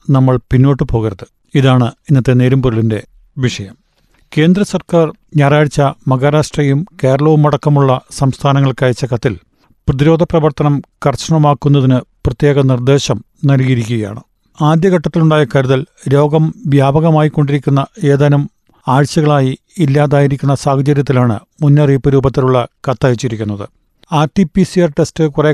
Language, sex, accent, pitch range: Malayalam, male, native, 135-155 Hz